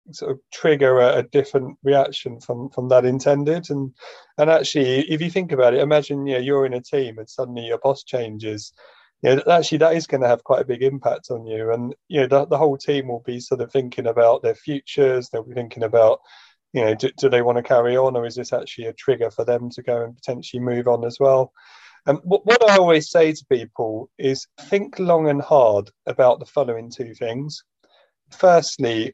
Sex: male